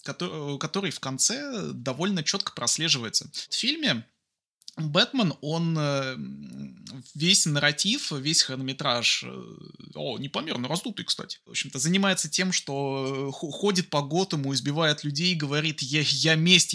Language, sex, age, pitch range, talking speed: Russian, male, 20-39, 135-185 Hz, 120 wpm